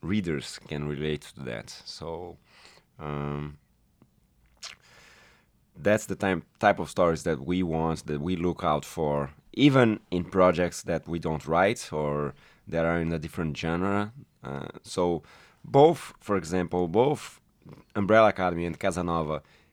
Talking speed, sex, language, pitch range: 135 wpm, male, English, 80-100 Hz